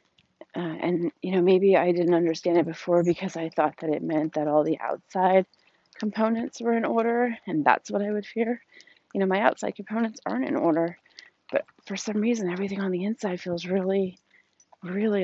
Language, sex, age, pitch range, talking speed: English, female, 30-49, 165-210 Hz, 195 wpm